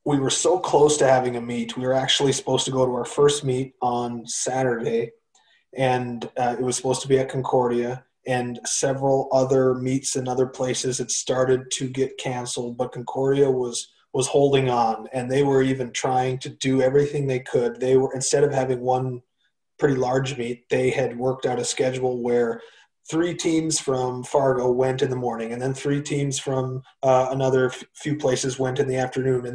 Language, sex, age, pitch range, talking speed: English, male, 30-49, 125-140 Hz, 195 wpm